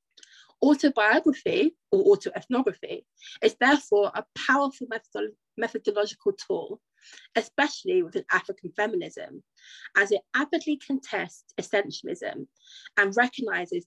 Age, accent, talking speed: 30-49, British, 85 wpm